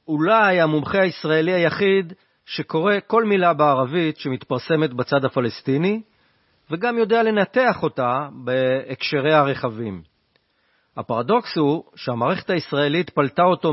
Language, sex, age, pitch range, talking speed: Hebrew, male, 40-59, 135-190 Hz, 100 wpm